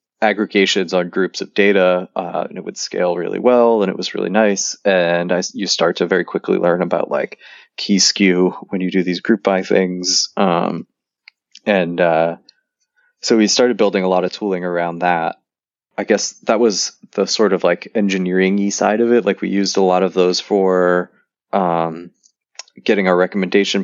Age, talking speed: 20-39, 185 wpm